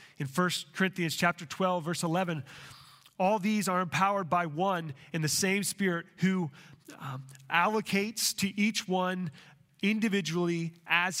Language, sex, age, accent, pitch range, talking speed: English, male, 30-49, American, 160-205 Hz, 135 wpm